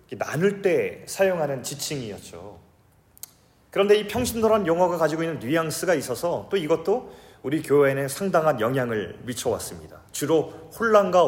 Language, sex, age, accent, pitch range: Korean, male, 40-59, native, 140-205 Hz